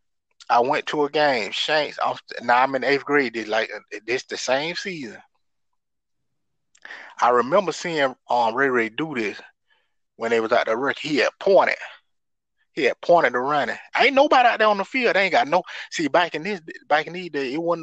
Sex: male